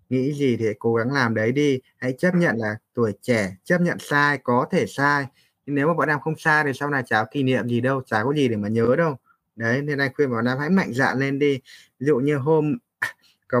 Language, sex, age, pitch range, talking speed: Vietnamese, male, 20-39, 120-150 Hz, 250 wpm